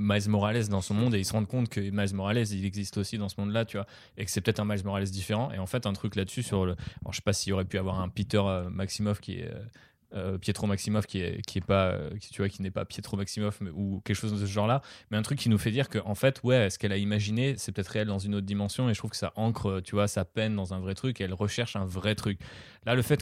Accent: French